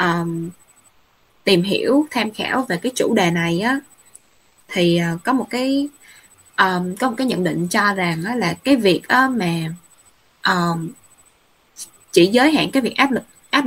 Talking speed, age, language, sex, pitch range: 140 wpm, 10-29, Vietnamese, female, 180-260 Hz